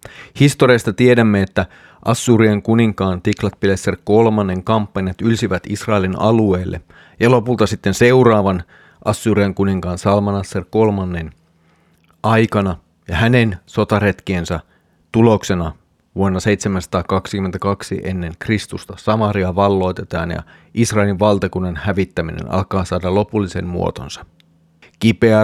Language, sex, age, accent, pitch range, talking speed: Finnish, male, 30-49, native, 90-110 Hz, 90 wpm